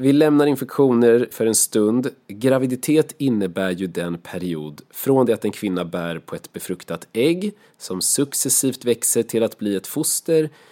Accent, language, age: native, Swedish, 30-49